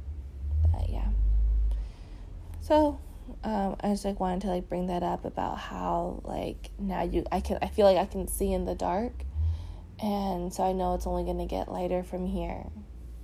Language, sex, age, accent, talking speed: English, female, 20-39, American, 180 wpm